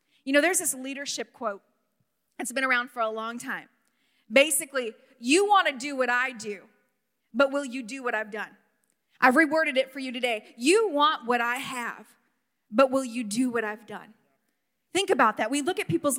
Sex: female